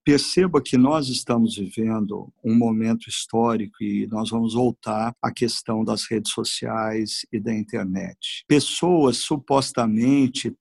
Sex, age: male, 50-69